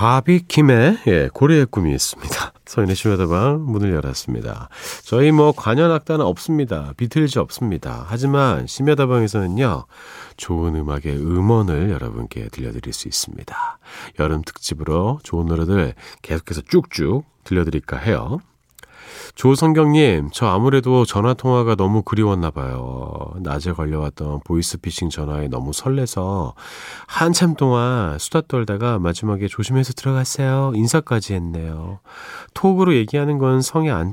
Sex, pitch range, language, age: male, 95-145 Hz, Korean, 40-59